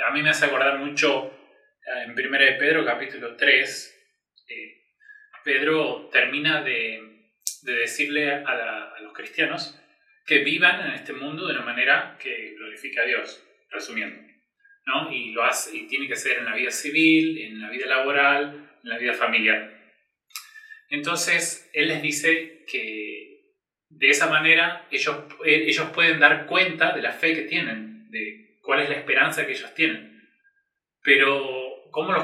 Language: Spanish